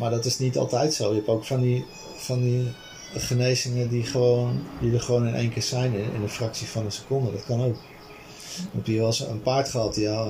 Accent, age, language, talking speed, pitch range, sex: Dutch, 40-59, Dutch, 240 wpm, 110-135 Hz, male